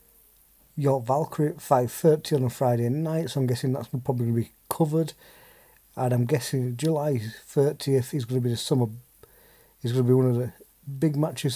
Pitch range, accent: 125-150 Hz, British